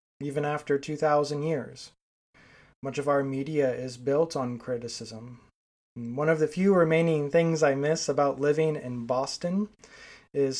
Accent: American